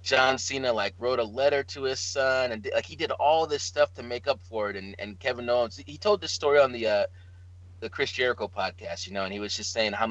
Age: 20-39